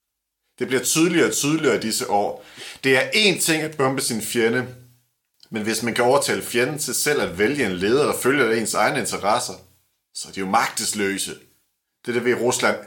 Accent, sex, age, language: native, male, 40-59, Danish